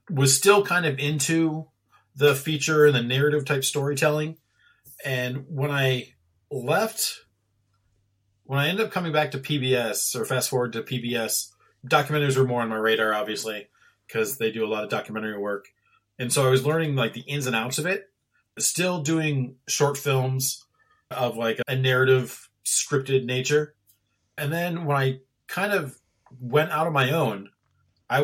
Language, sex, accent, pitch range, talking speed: English, male, American, 120-150 Hz, 165 wpm